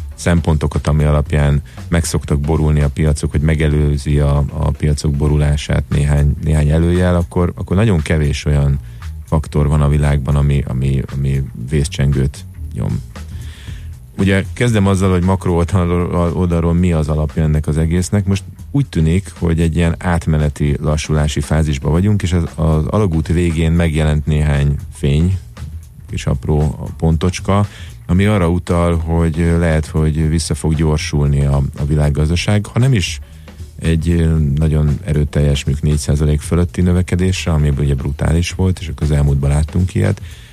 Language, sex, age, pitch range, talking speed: Hungarian, male, 30-49, 75-85 Hz, 140 wpm